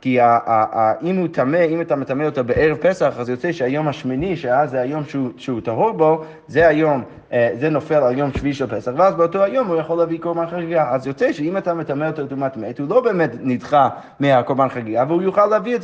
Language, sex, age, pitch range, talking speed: Hebrew, male, 20-39, 135-170 Hz, 210 wpm